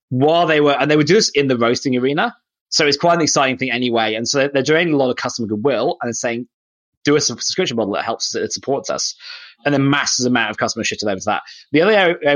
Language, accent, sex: English, British, male